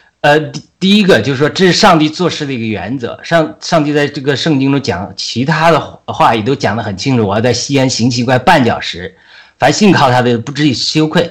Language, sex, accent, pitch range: Chinese, male, native, 120-160 Hz